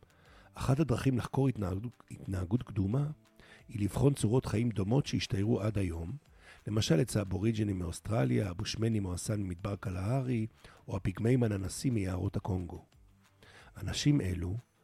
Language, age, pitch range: Hebrew, 50-69, 100-130 Hz